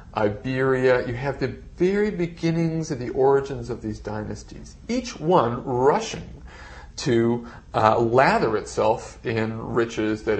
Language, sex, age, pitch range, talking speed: English, male, 40-59, 110-165 Hz, 125 wpm